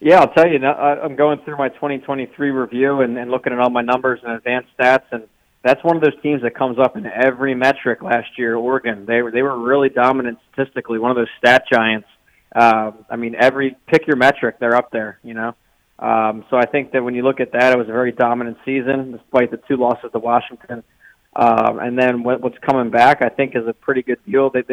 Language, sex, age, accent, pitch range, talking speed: English, male, 20-39, American, 115-130 Hz, 215 wpm